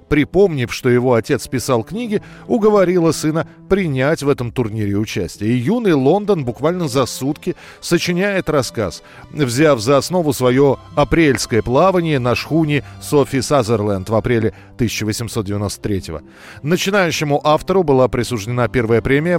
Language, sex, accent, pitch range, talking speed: Russian, male, native, 115-160 Hz, 125 wpm